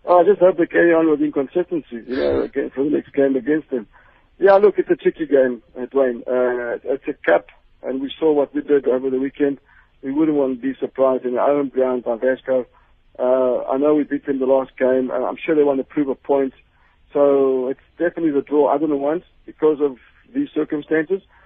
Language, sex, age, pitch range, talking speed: English, male, 50-69, 130-155 Hz, 220 wpm